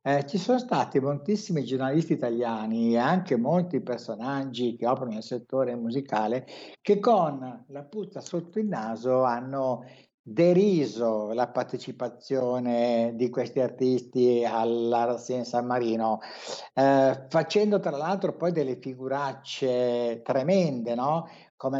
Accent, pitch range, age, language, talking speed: native, 125-165 Hz, 60-79, Italian, 120 wpm